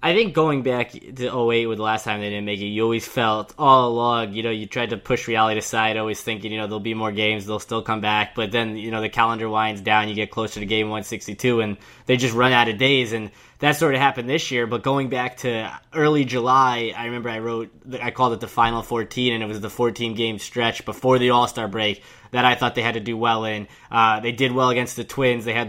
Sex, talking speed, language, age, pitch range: male, 260 wpm, English, 10-29, 115-130 Hz